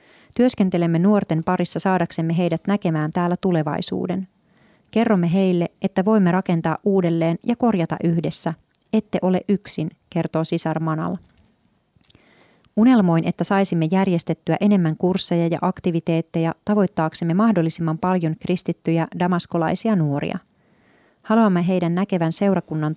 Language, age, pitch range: Finnish, 30-49, 165-195 Hz